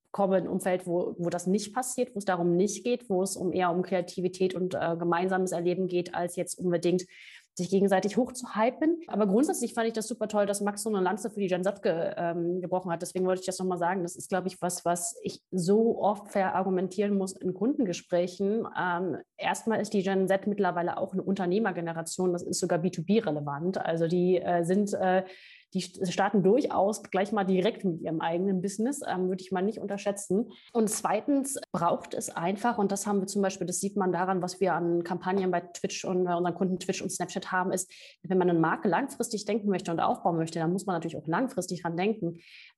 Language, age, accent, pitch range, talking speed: German, 30-49, German, 175-200 Hz, 215 wpm